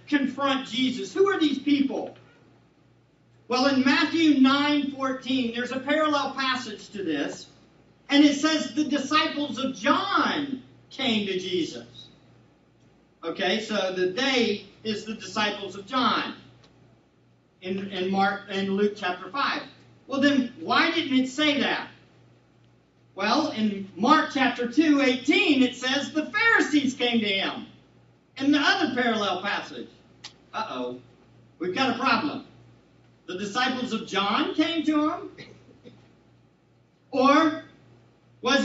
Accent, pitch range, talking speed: American, 235-300 Hz, 130 wpm